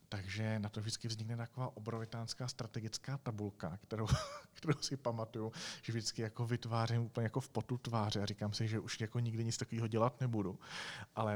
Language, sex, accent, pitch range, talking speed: Czech, male, native, 100-125 Hz, 180 wpm